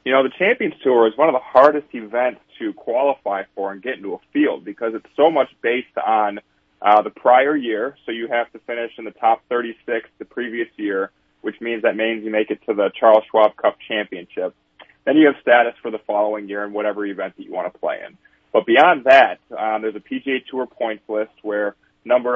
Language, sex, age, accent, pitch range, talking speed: English, male, 30-49, American, 105-120 Hz, 225 wpm